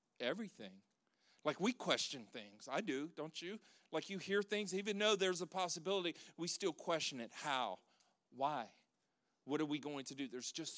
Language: English